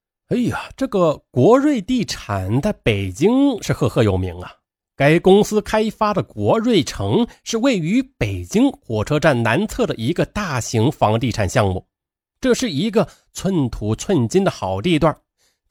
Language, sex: Chinese, male